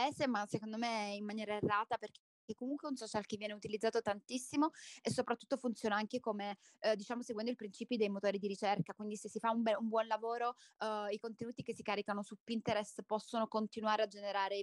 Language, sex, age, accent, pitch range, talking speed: Italian, female, 20-39, native, 205-235 Hz, 205 wpm